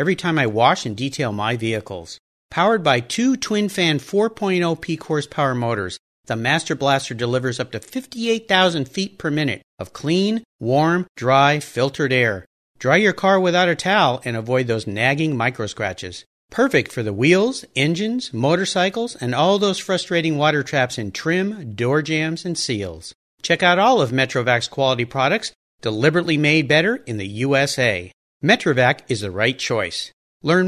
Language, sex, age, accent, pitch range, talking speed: English, male, 50-69, American, 120-175 Hz, 155 wpm